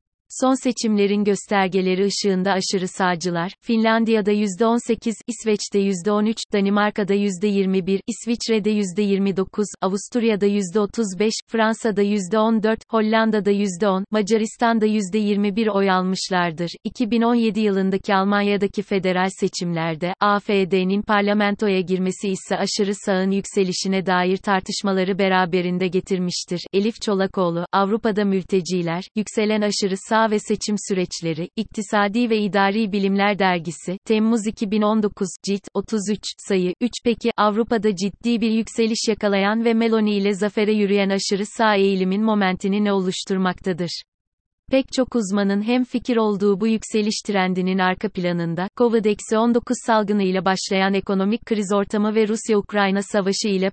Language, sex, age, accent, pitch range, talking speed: Turkish, female, 30-49, native, 190-220 Hz, 110 wpm